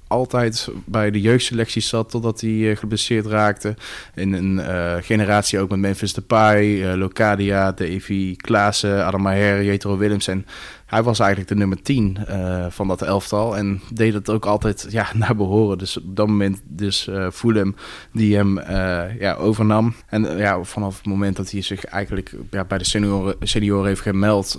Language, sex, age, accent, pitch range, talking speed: English, male, 20-39, Dutch, 95-105 Hz, 180 wpm